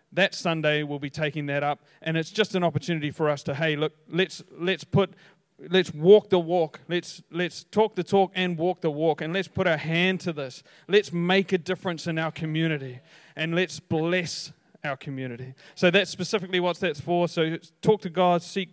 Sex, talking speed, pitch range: male, 200 wpm, 145-185 Hz